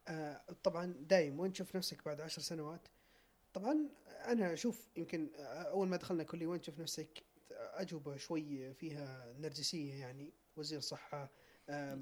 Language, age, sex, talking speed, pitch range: Arabic, 20-39, male, 135 wpm, 145-185 Hz